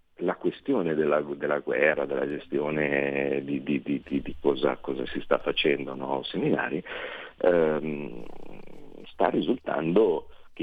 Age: 50-69